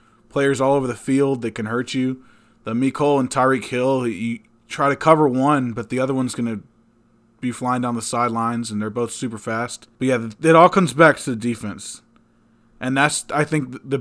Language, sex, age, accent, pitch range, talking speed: English, male, 20-39, American, 115-130 Hz, 210 wpm